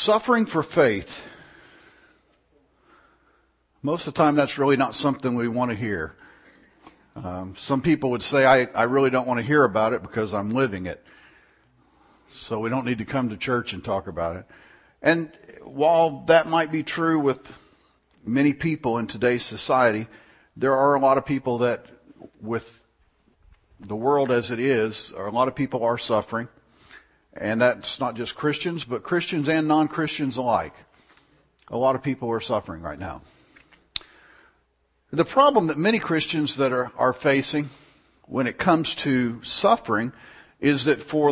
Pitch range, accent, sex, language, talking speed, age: 115-150 Hz, American, male, English, 160 wpm, 50-69